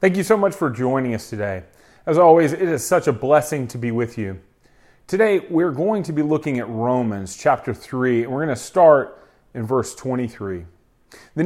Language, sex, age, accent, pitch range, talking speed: English, male, 30-49, American, 120-165 Hz, 200 wpm